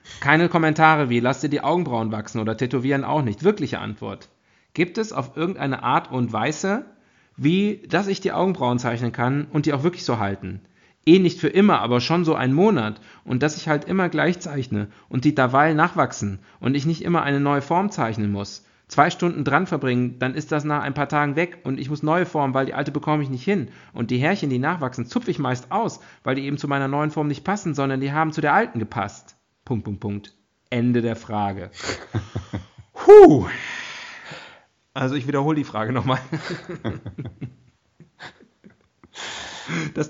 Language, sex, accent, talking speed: German, male, German, 190 wpm